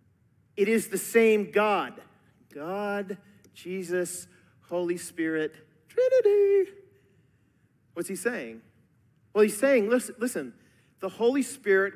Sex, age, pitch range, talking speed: male, 40-59, 160-215 Hz, 105 wpm